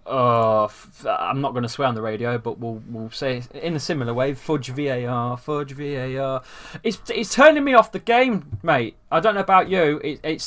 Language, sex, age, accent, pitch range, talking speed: English, male, 20-39, British, 125-155 Hz, 210 wpm